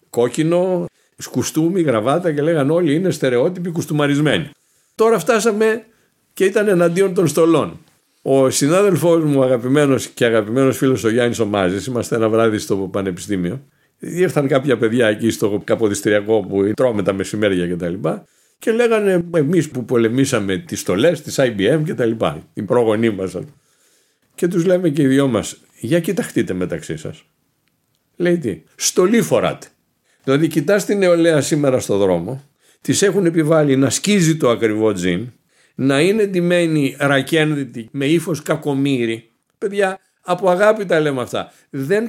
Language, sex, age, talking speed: Greek, male, 50-69, 140 wpm